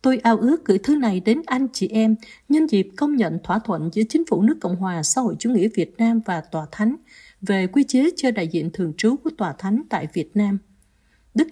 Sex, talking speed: female, 240 wpm